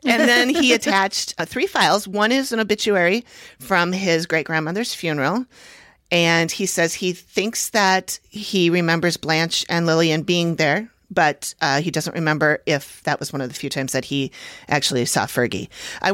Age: 40-59